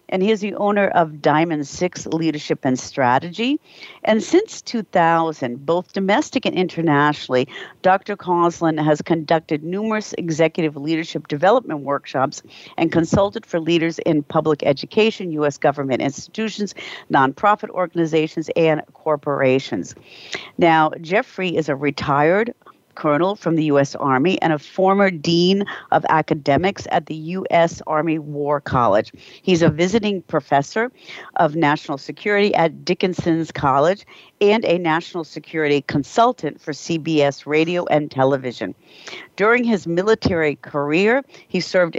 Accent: American